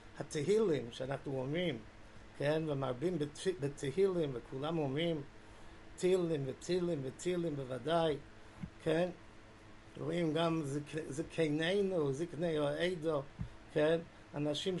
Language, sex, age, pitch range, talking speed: English, male, 50-69, 135-170 Hz, 95 wpm